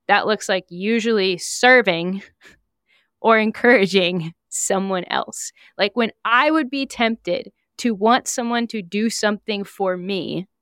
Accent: American